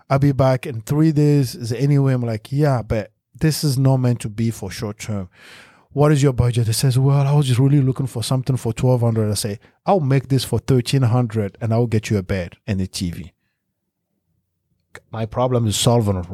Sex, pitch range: male, 110-140 Hz